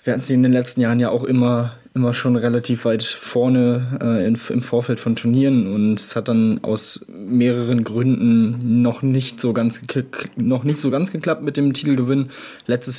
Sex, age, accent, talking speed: male, 20-39, German, 175 wpm